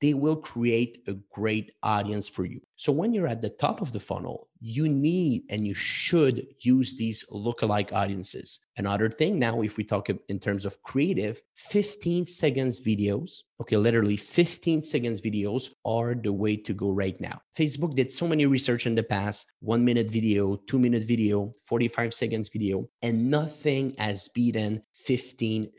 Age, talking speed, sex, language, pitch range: 30-49, 170 wpm, male, English, 105-125 Hz